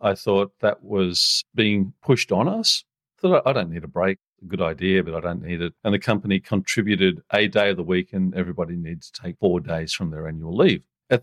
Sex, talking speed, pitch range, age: male, 230 wpm, 95-120 Hz, 40-59